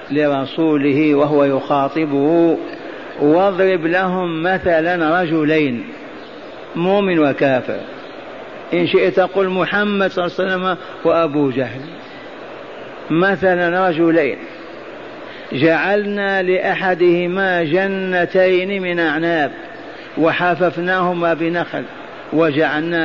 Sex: male